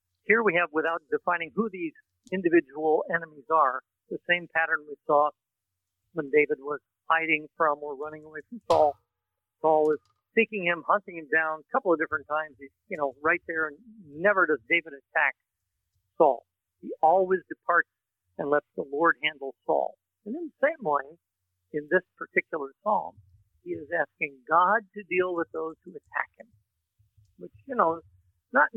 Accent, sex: American, male